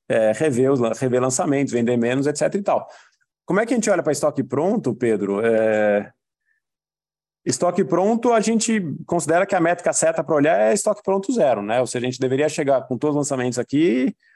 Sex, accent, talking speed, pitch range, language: male, Brazilian, 190 wpm, 120-160 Hz, Portuguese